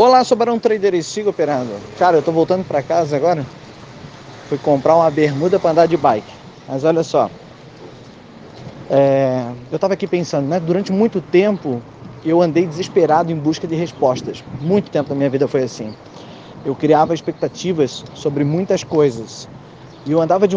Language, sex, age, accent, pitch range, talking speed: Portuguese, male, 20-39, Brazilian, 145-180 Hz, 160 wpm